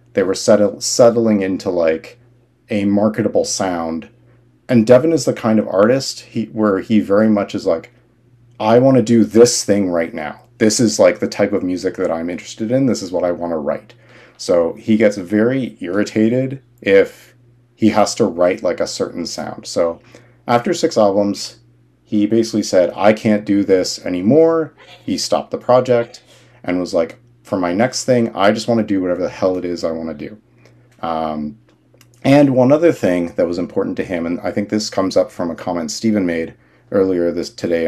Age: 40-59